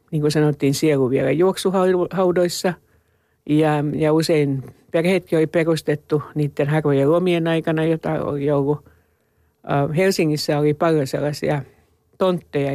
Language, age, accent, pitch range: Finnish, 60-79, native, 140-170 Hz